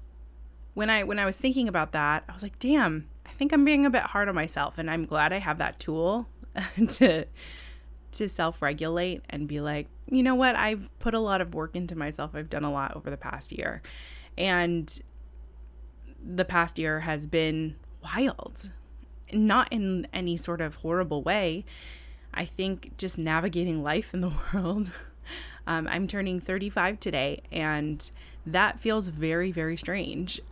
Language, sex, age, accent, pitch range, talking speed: English, female, 20-39, American, 150-195 Hz, 170 wpm